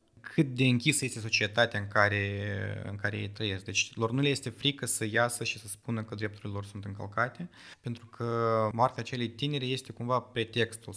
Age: 20-39